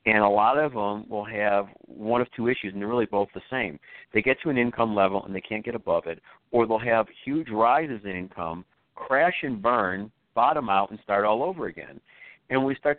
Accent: American